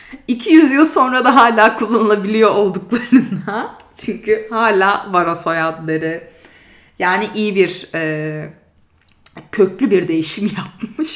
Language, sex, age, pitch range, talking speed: Turkish, female, 30-49, 170-235 Hz, 95 wpm